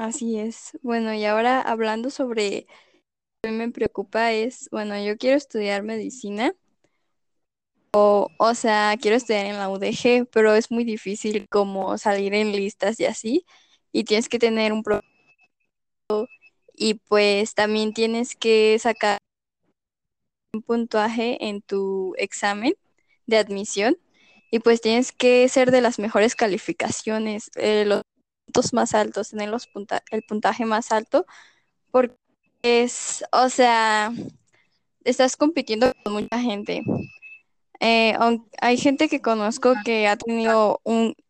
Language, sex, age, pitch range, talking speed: Spanish, female, 10-29, 205-240 Hz, 135 wpm